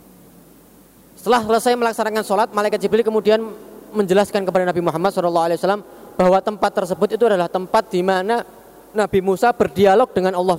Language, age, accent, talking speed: Indonesian, 20-39, native, 140 wpm